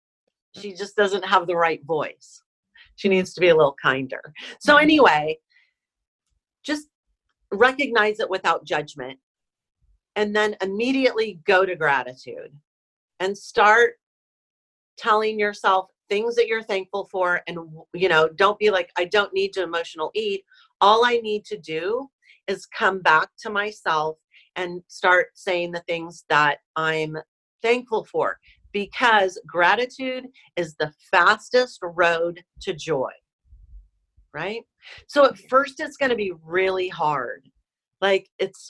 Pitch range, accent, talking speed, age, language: 170-245 Hz, American, 135 wpm, 40-59, English